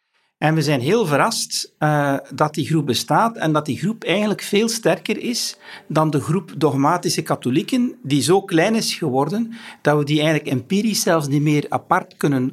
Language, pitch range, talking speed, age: Dutch, 135-200 Hz, 175 wpm, 60-79